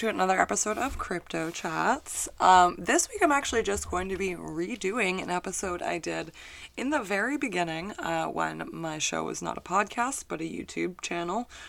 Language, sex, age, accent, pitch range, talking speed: English, female, 20-39, American, 170-245 Hz, 185 wpm